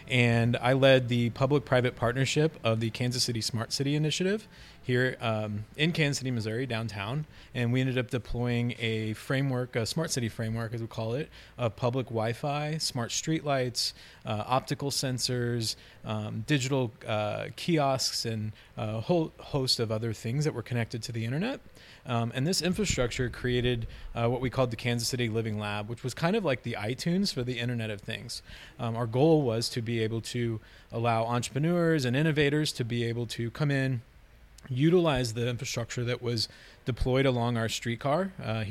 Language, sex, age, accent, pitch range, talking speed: English, male, 20-39, American, 115-135 Hz, 175 wpm